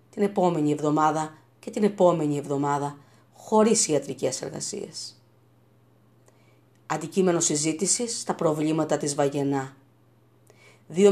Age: 40-59